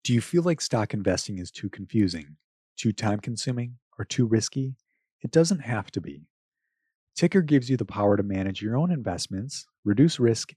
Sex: male